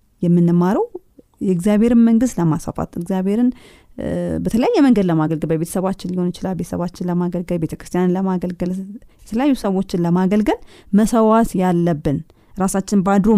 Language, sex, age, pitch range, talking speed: Amharic, female, 20-39, 175-230 Hz, 100 wpm